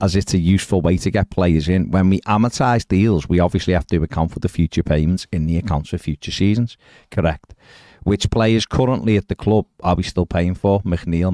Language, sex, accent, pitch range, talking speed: English, male, British, 85-110 Hz, 215 wpm